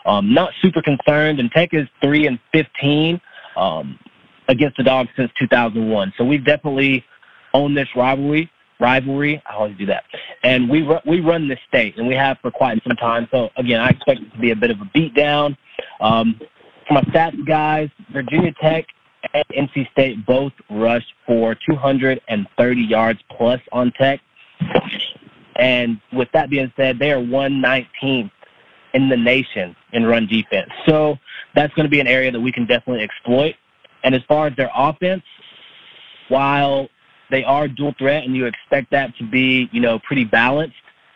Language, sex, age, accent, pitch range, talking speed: English, male, 30-49, American, 120-145 Hz, 180 wpm